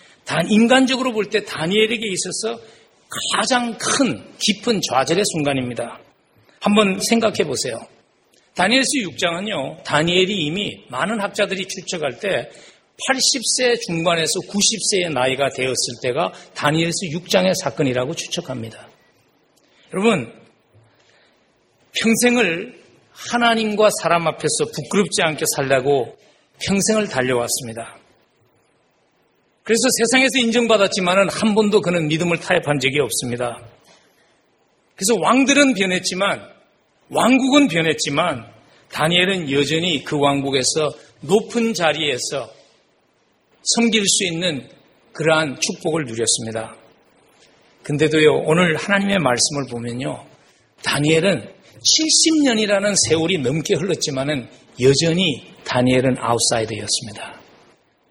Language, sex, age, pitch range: Korean, male, 40-59, 140-215 Hz